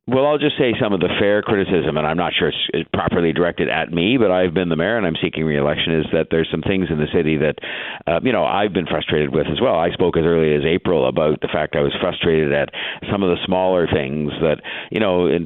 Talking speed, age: 260 wpm, 50-69